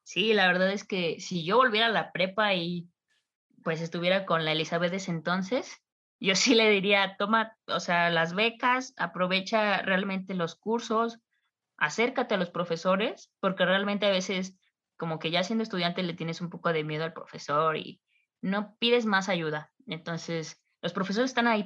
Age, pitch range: 20-39, 175-215 Hz